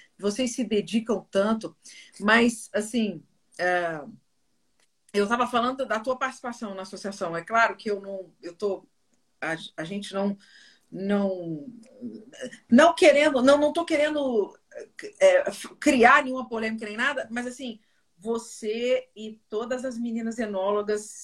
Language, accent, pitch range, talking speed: Portuguese, Brazilian, 210-260 Hz, 135 wpm